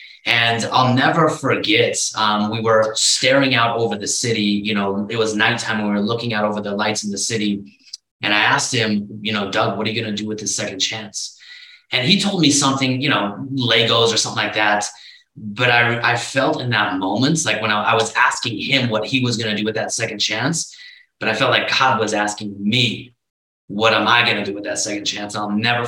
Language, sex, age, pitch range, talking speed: English, male, 30-49, 105-130 Hz, 230 wpm